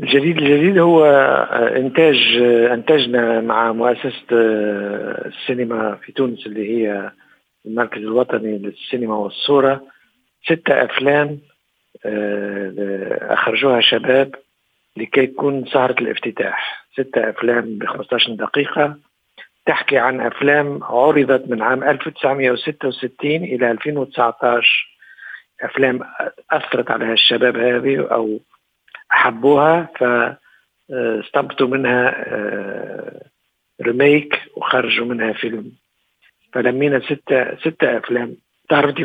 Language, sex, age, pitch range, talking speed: Arabic, male, 50-69, 120-145 Hz, 85 wpm